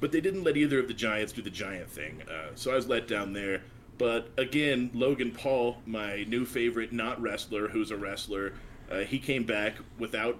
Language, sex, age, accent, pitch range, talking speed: English, male, 40-59, American, 105-125 Hz, 200 wpm